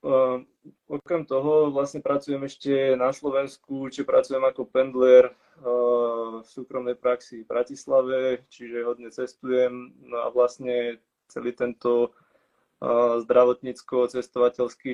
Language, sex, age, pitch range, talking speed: Czech, male, 20-39, 120-130 Hz, 100 wpm